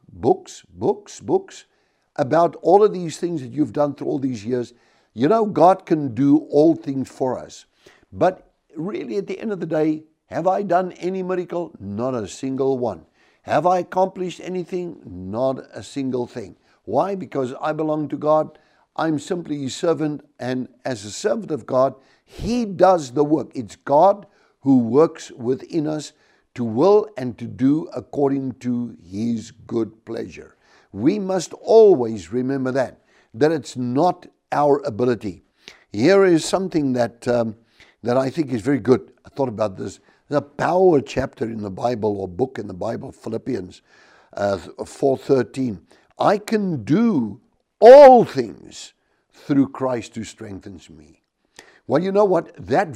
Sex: male